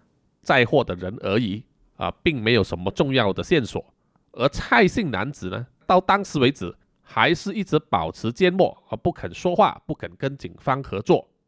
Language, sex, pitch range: Chinese, male, 100-165 Hz